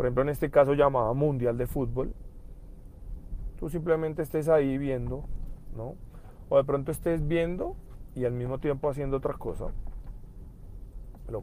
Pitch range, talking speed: 105-140 Hz, 145 wpm